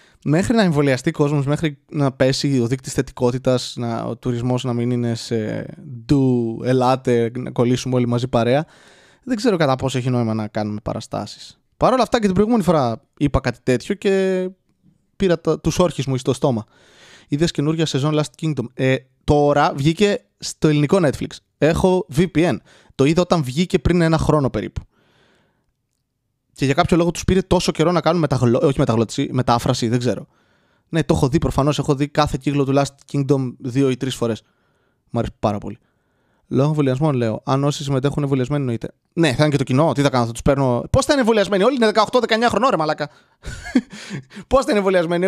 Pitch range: 130-180 Hz